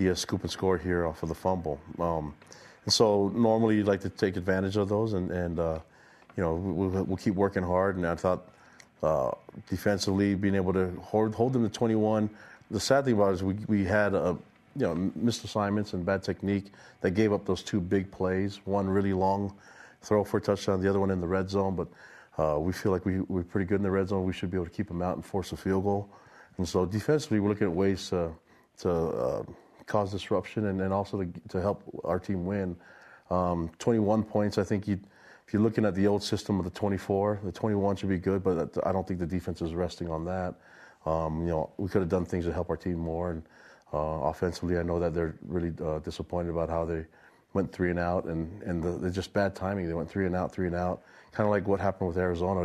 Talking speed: 245 wpm